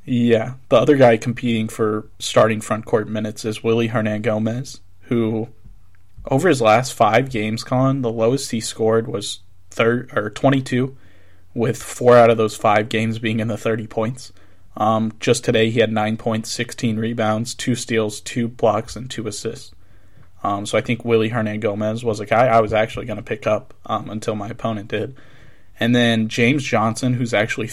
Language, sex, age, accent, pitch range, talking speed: English, male, 20-39, American, 110-120 Hz, 185 wpm